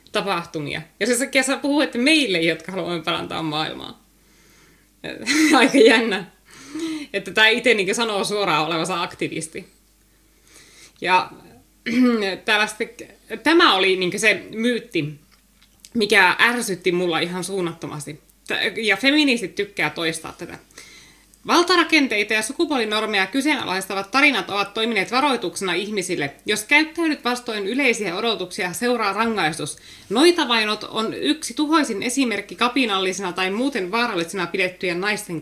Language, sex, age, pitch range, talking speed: Finnish, female, 20-39, 180-255 Hz, 105 wpm